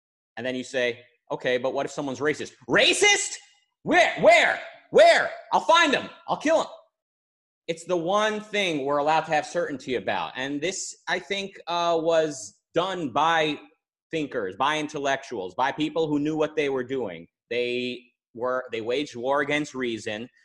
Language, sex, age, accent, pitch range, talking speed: English, male, 30-49, American, 125-160 Hz, 165 wpm